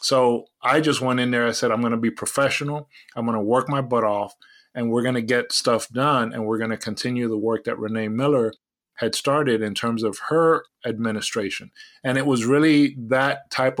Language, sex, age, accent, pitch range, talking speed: English, male, 30-49, American, 110-125 Hz, 215 wpm